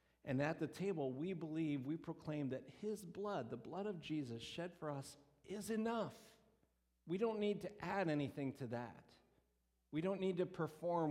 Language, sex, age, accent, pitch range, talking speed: English, male, 50-69, American, 120-155 Hz, 180 wpm